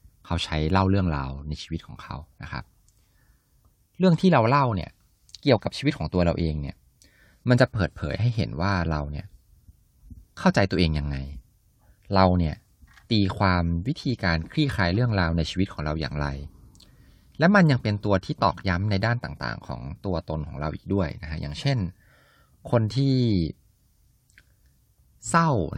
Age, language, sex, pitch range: 20-39, Thai, male, 80-110 Hz